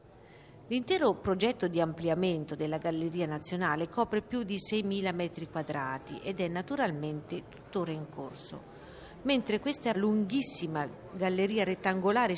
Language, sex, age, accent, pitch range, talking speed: Italian, female, 50-69, native, 165-215 Hz, 115 wpm